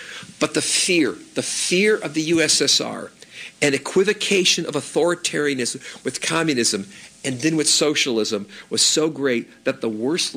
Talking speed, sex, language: 140 wpm, male, English